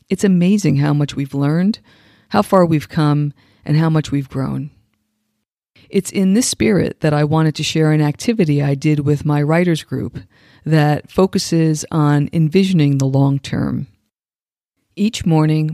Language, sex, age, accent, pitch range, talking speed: English, female, 50-69, American, 140-170 Hz, 155 wpm